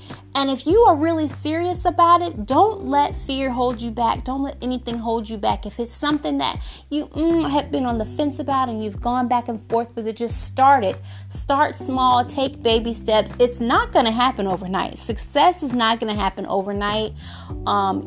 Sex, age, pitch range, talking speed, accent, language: female, 30-49, 205-290 Hz, 205 wpm, American, English